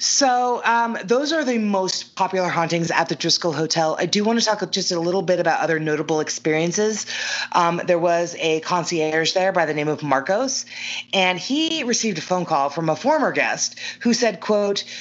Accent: American